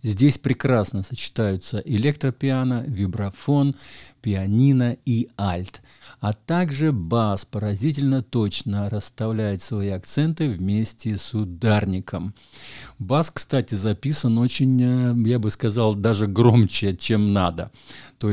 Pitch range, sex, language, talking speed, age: 100-125 Hz, male, Russian, 100 wpm, 50-69